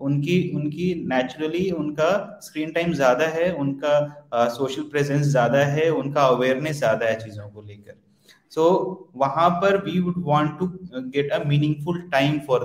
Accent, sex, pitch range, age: native, male, 135-175 Hz, 30-49